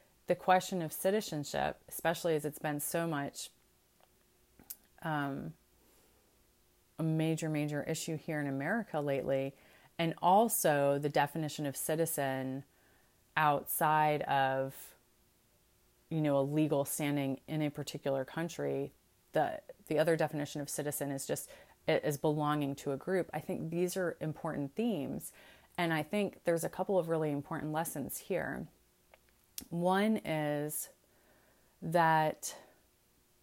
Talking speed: 125 wpm